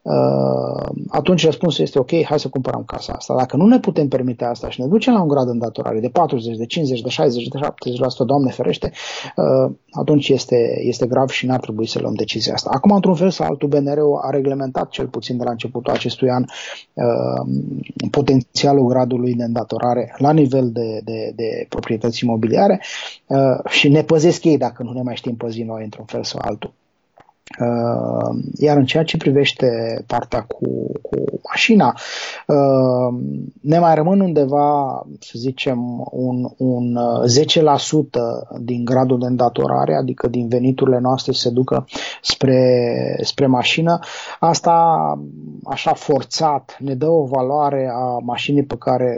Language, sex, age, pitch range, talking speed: Romanian, male, 20-39, 120-140 Hz, 160 wpm